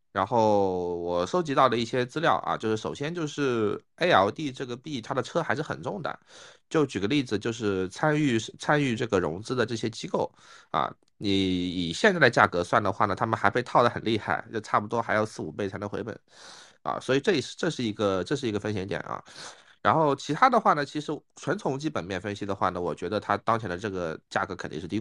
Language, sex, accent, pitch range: Chinese, male, native, 95-130 Hz